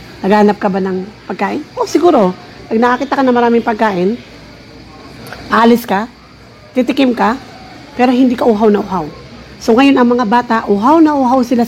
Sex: female